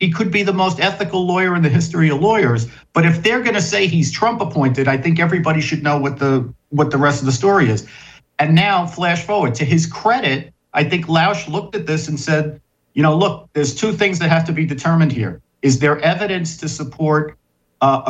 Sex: male